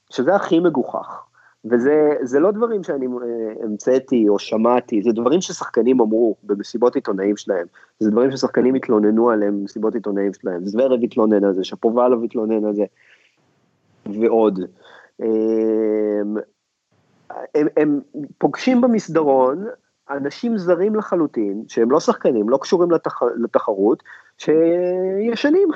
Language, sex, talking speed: Hebrew, male, 110 wpm